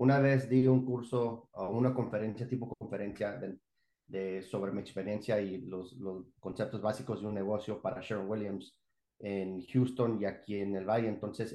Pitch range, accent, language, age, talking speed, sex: 110-135 Hz, Mexican, English, 30-49, 175 wpm, male